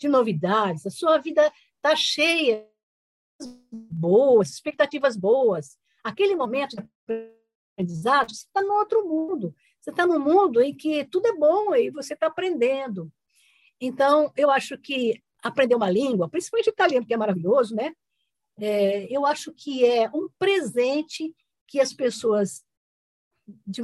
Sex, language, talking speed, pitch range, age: female, Italian, 145 wpm, 215-315 Hz, 60-79